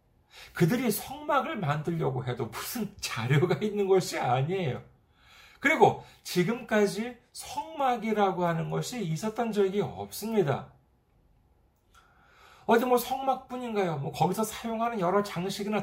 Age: 40-59